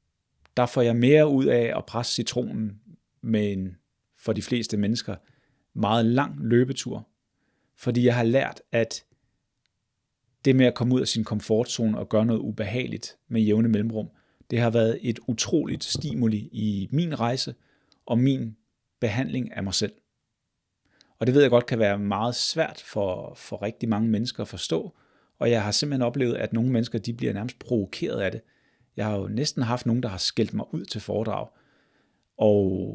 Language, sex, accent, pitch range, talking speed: Danish, male, native, 105-125 Hz, 175 wpm